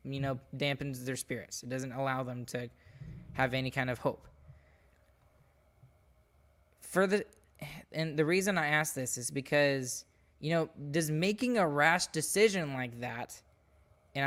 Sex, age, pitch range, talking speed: male, 10-29, 135-165 Hz, 145 wpm